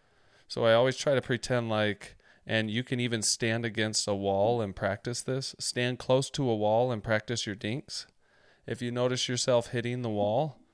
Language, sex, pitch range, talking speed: English, male, 100-120 Hz, 190 wpm